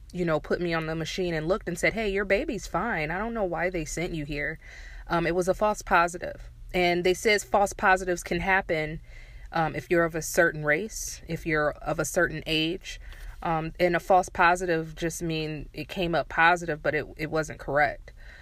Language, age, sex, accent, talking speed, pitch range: English, 20-39, female, American, 210 wpm, 160-195 Hz